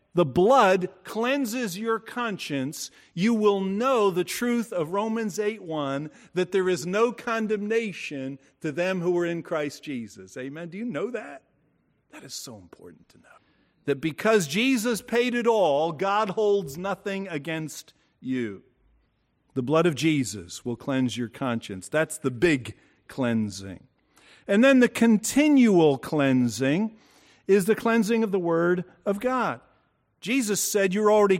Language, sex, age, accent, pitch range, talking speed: English, male, 50-69, American, 140-215 Hz, 145 wpm